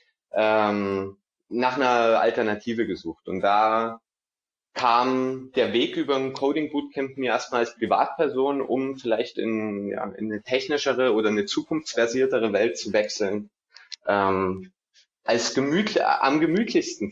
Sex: male